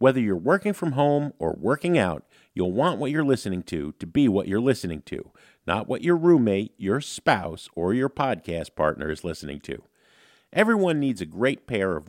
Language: English